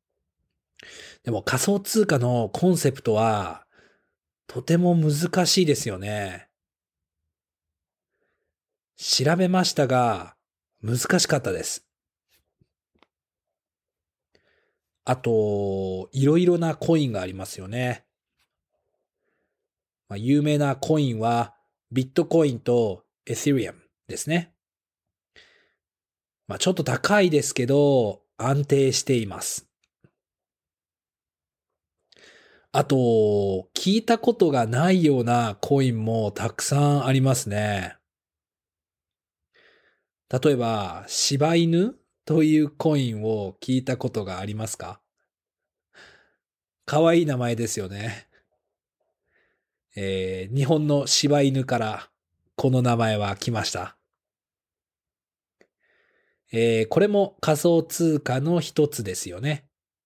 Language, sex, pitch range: Japanese, male, 105-155 Hz